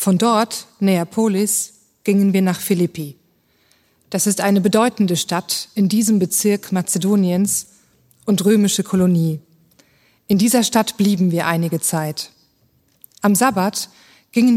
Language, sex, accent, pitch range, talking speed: German, female, German, 170-220 Hz, 120 wpm